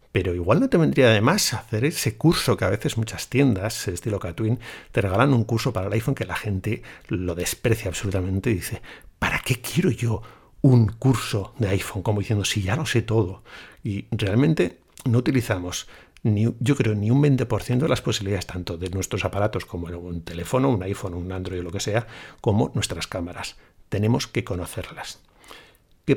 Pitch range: 95-120 Hz